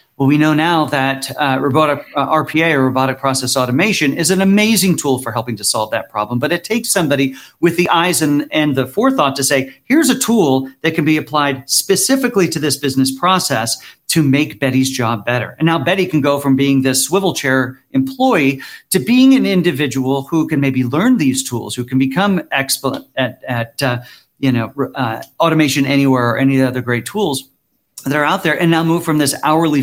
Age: 40-59